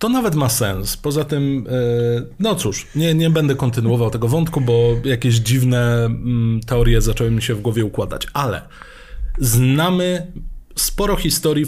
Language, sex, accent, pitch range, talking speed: Polish, male, native, 120-150 Hz, 145 wpm